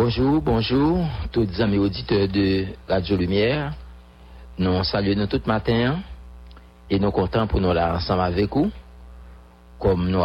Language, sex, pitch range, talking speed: English, male, 80-100 Hz, 150 wpm